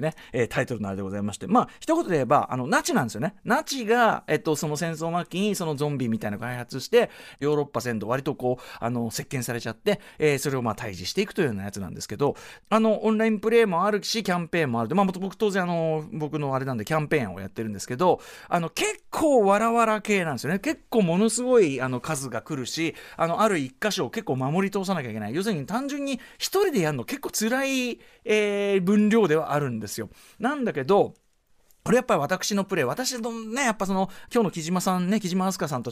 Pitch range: 145-230 Hz